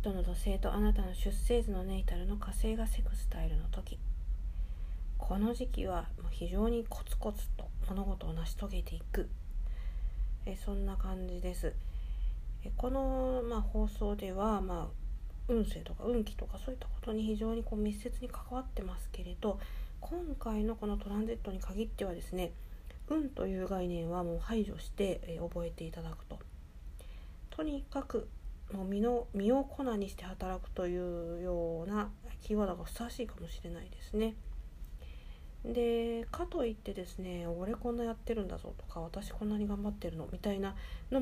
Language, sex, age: Japanese, female, 40-59